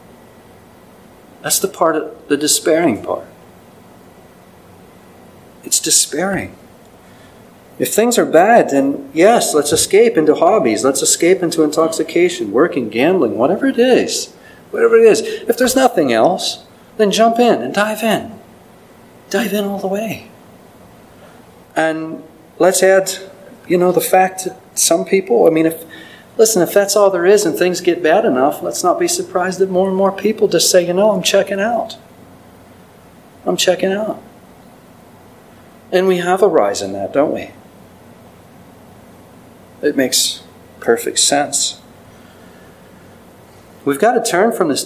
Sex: male